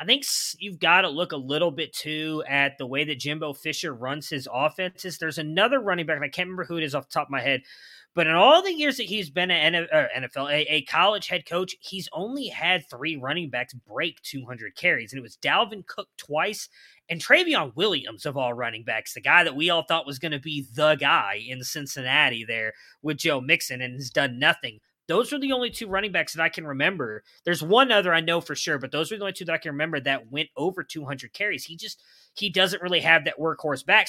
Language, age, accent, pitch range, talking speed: English, 20-39, American, 140-185 Hz, 240 wpm